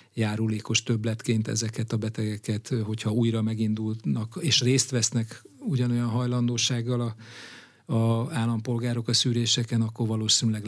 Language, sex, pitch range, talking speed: Hungarian, male, 115-130 Hz, 105 wpm